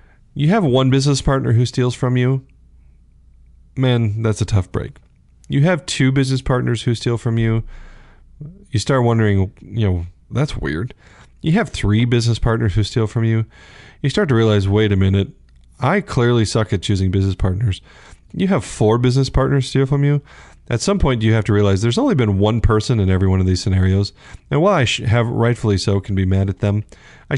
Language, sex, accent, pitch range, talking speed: English, male, American, 100-135 Hz, 200 wpm